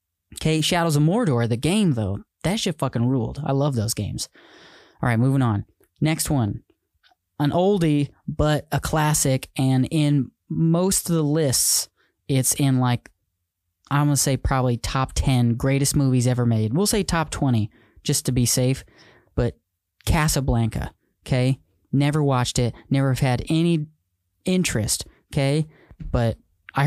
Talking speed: 150 wpm